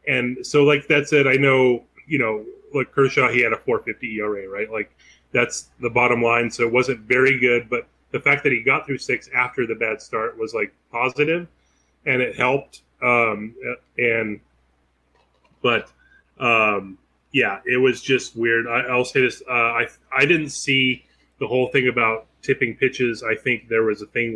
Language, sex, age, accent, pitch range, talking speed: English, male, 30-49, American, 115-135 Hz, 185 wpm